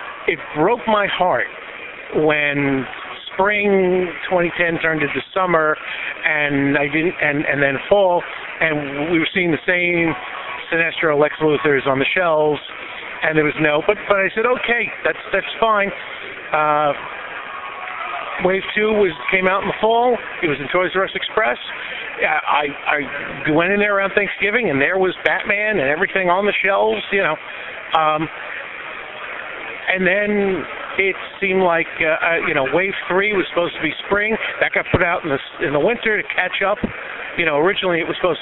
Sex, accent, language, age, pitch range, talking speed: male, American, English, 50-69, 150-195 Hz, 170 wpm